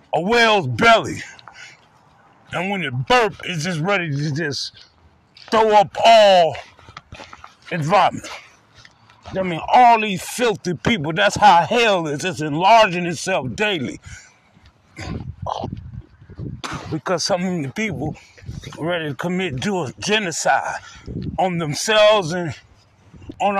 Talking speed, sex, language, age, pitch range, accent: 115 wpm, male, English, 50-69, 170-225 Hz, American